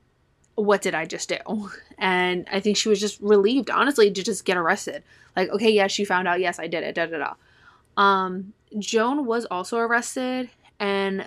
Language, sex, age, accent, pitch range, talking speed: English, female, 20-39, American, 185-220 Hz, 190 wpm